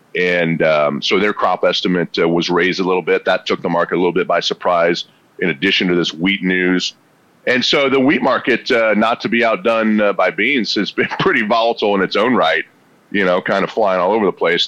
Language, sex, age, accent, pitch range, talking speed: English, male, 40-59, American, 90-110 Hz, 235 wpm